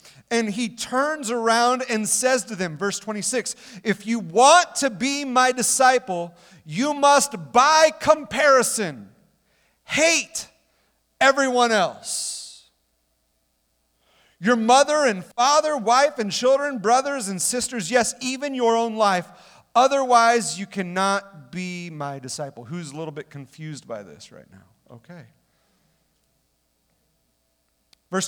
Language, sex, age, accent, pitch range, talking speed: English, male, 40-59, American, 185-265 Hz, 120 wpm